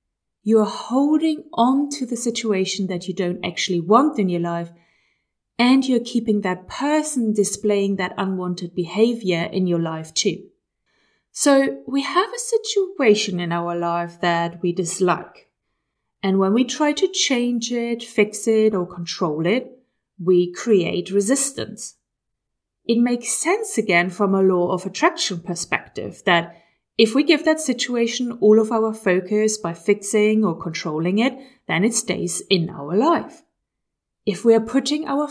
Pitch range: 180-250 Hz